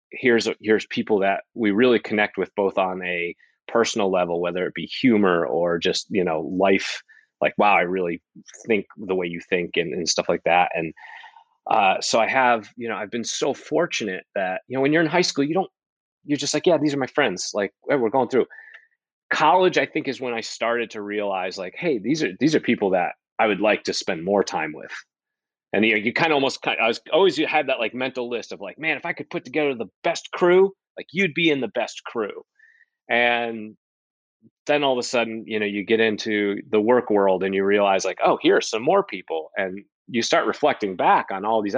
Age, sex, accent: 30-49, male, American